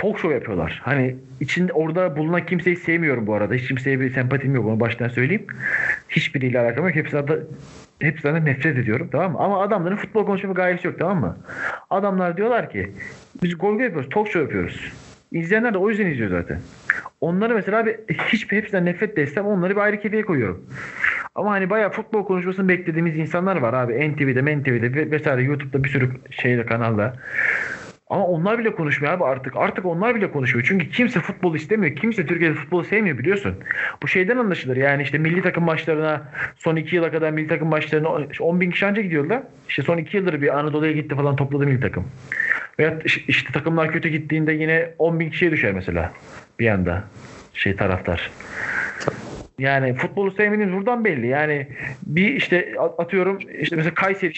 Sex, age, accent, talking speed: male, 40-59, native, 170 wpm